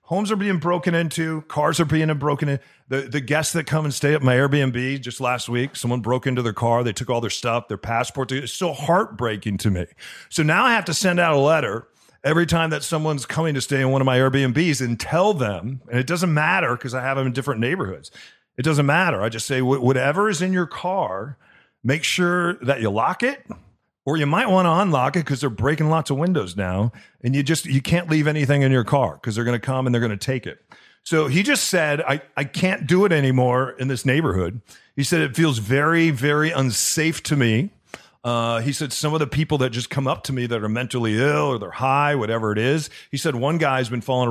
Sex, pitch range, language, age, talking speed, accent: male, 125-155 Hz, English, 40-59, 245 wpm, American